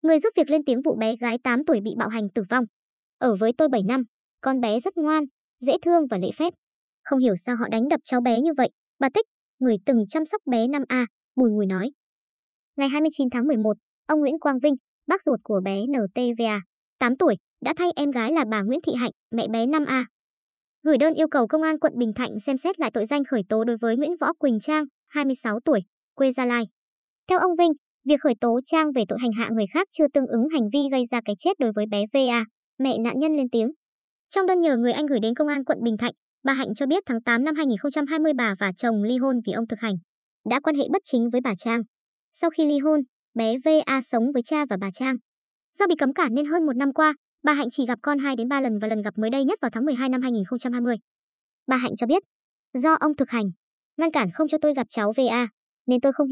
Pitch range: 230-300 Hz